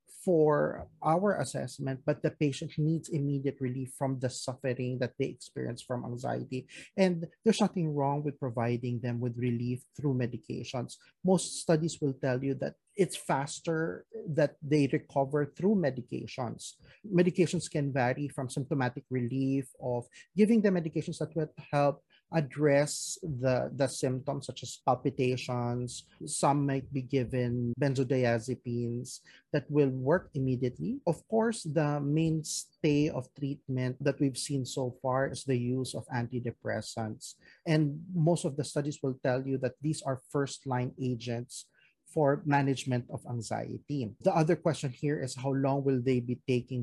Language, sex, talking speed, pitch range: English, male, 145 wpm, 130-155 Hz